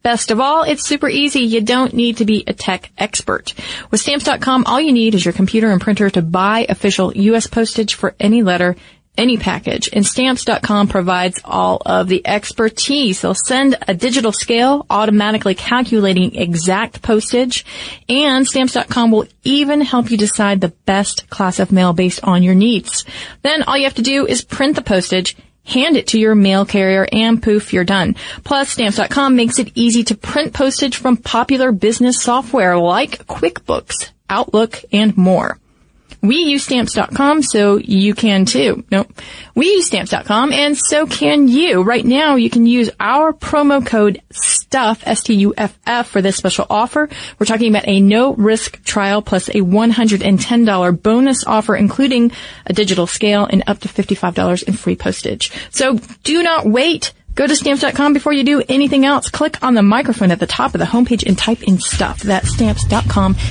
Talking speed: 170 wpm